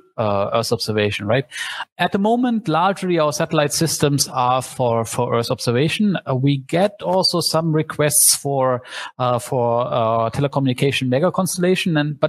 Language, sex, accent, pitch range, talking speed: English, male, German, 130-165 Hz, 150 wpm